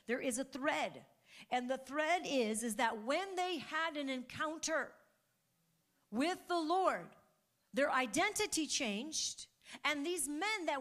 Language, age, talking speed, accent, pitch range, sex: English, 50-69, 140 wpm, American, 245-340 Hz, female